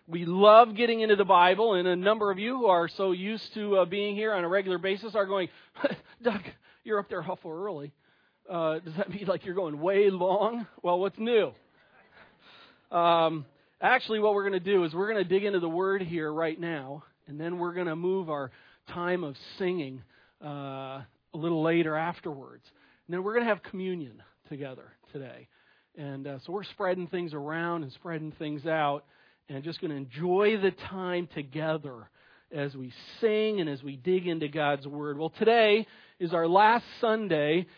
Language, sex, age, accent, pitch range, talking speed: English, male, 40-59, American, 160-210 Hz, 190 wpm